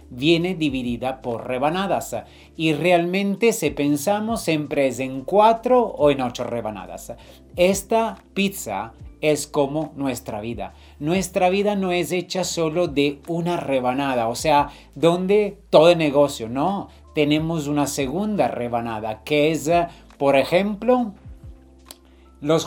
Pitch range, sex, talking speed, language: 135-185 Hz, male, 125 wpm, Spanish